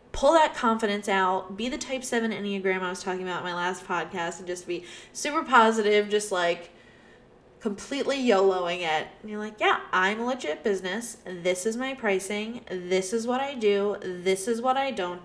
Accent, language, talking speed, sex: American, English, 190 wpm, female